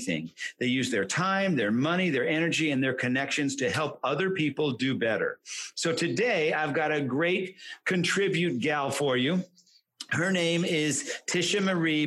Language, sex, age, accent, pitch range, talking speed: English, male, 50-69, American, 135-175 Hz, 165 wpm